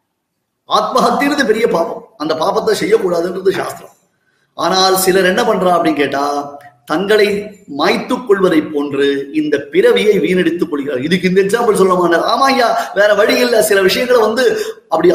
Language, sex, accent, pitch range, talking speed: Tamil, male, native, 185-250 Hz, 105 wpm